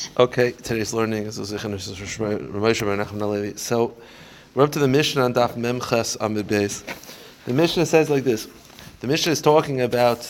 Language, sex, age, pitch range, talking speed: English, male, 30-49, 110-130 Hz, 115 wpm